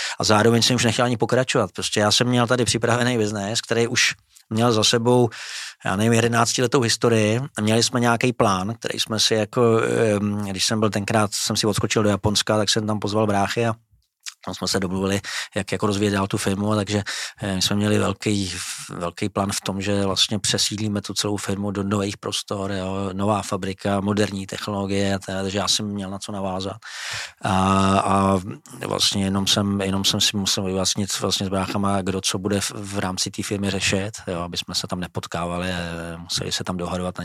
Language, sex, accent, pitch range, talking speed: Czech, male, native, 100-115 Hz, 190 wpm